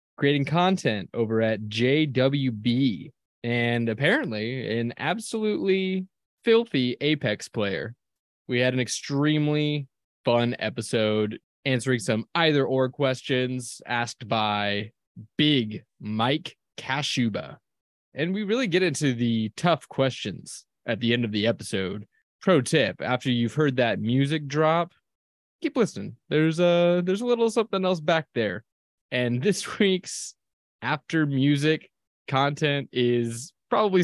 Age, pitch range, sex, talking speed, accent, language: 20-39, 115-150 Hz, male, 120 wpm, American, English